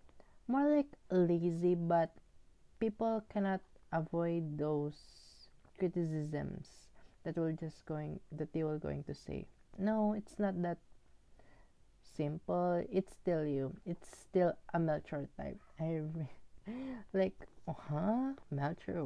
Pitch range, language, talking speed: 145-180 Hz, English, 115 wpm